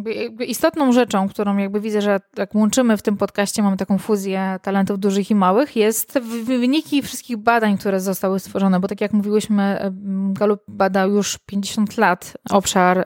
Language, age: Polish, 20-39